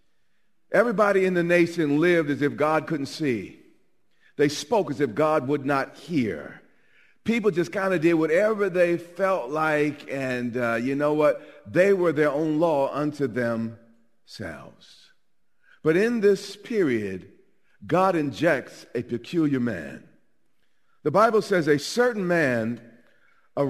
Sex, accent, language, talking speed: male, American, English, 140 wpm